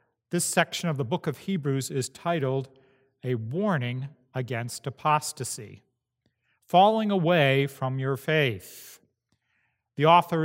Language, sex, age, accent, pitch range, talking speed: English, male, 40-59, American, 125-180 Hz, 115 wpm